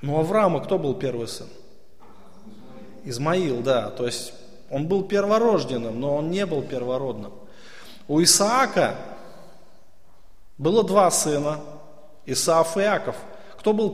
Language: Russian